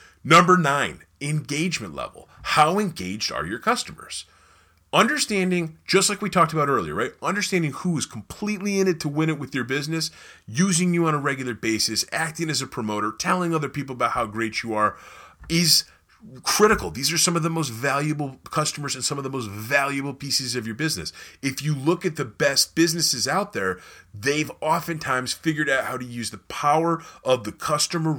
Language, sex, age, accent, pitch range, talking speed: English, male, 30-49, American, 115-165 Hz, 185 wpm